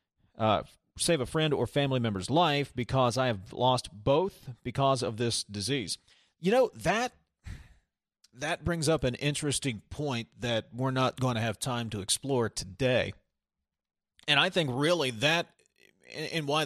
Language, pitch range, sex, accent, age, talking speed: English, 120-155 Hz, male, American, 40-59, 155 wpm